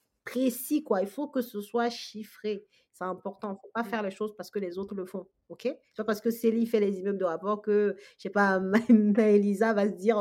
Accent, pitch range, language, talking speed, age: French, 195-235 Hz, French, 245 wpm, 40-59